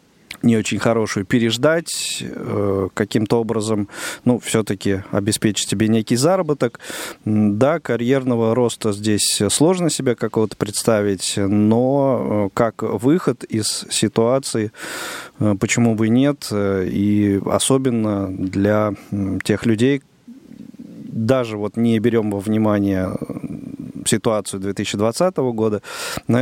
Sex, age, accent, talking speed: male, 20-39, native, 100 wpm